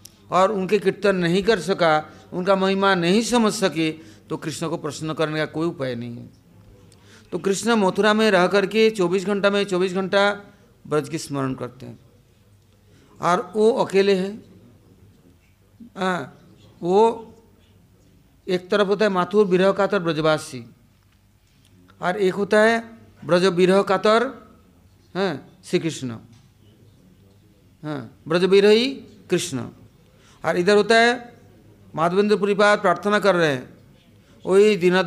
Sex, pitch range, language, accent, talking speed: male, 120-200 Hz, English, Indian, 125 wpm